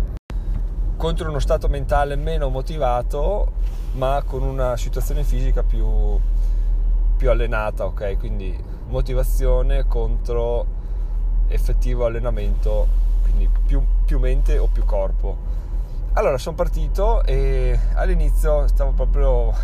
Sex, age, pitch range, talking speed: male, 20-39, 95-125 Hz, 105 wpm